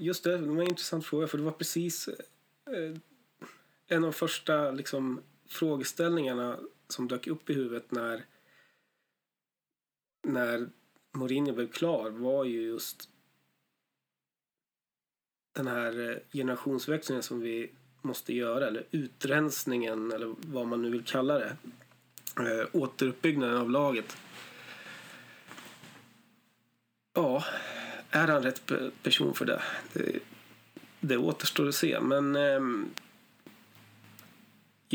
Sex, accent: male, native